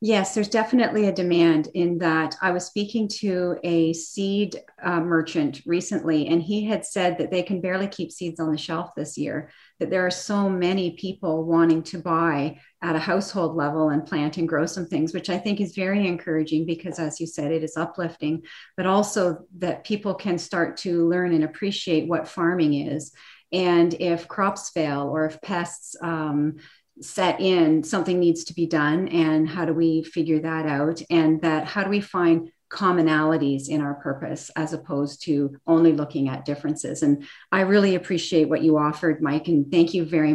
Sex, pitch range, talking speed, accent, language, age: female, 160-190 Hz, 190 wpm, American, English, 40-59